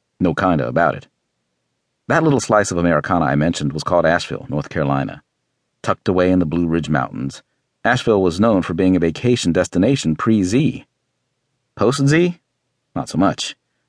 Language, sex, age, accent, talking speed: English, male, 50-69, American, 155 wpm